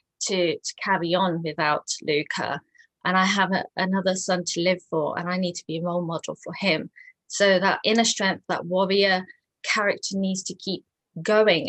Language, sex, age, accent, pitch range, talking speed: English, female, 30-49, British, 175-205 Hz, 180 wpm